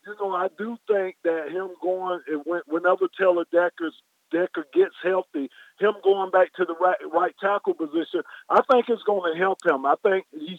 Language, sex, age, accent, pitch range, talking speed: English, male, 50-69, American, 165-205 Hz, 180 wpm